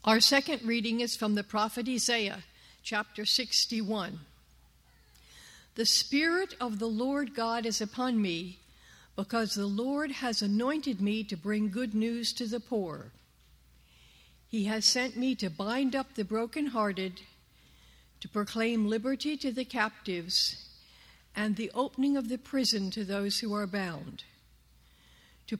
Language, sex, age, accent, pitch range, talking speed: English, female, 60-79, American, 185-250 Hz, 140 wpm